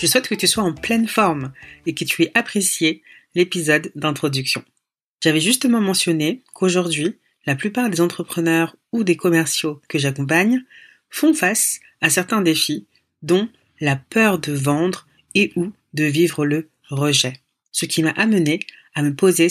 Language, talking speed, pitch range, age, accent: French, 155 wpm, 150-205 Hz, 40-59, French